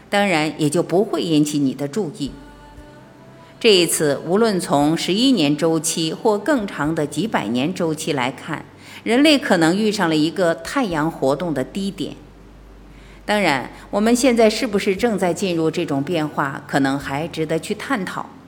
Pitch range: 150-220 Hz